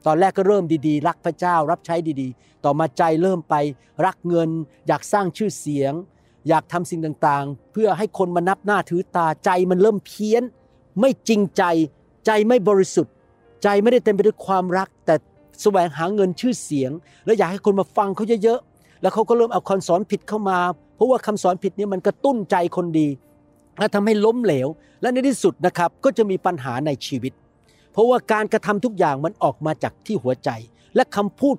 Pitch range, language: 160-210 Hz, Thai